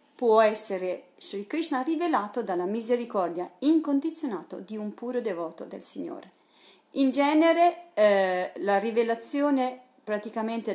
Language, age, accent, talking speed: Italian, 40-59, native, 110 wpm